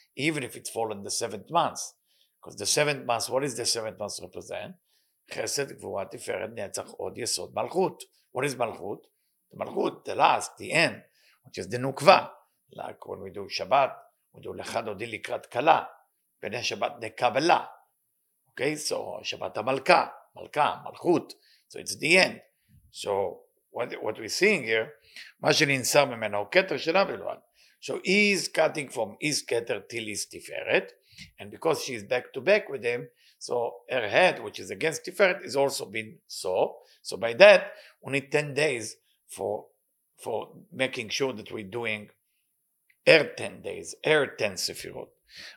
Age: 50-69